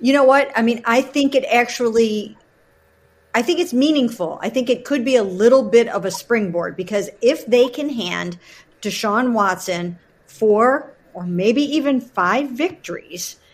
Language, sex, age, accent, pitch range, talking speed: English, female, 50-69, American, 185-245 Hz, 165 wpm